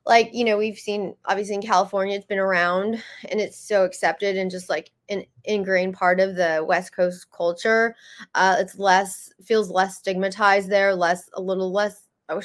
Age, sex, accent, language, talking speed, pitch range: 20-39, female, American, English, 185 wpm, 185-225 Hz